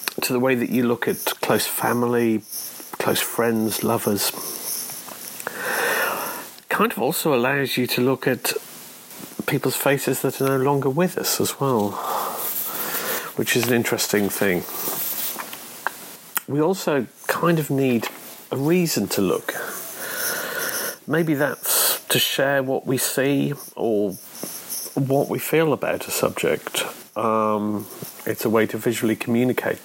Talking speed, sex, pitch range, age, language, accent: 135 wpm, male, 105-135 Hz, 40-59, English, British